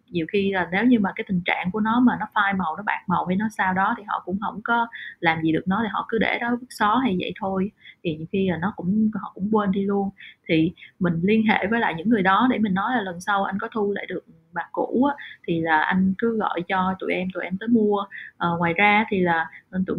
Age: 20-39